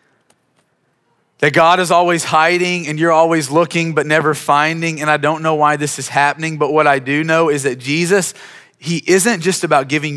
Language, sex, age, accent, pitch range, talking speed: English, male, 30-49, American, 125-150 Hz, 195 wpm